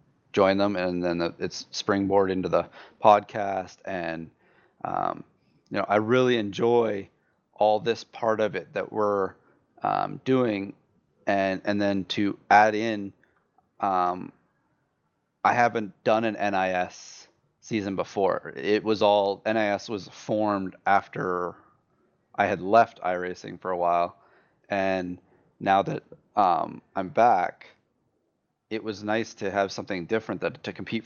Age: 30-49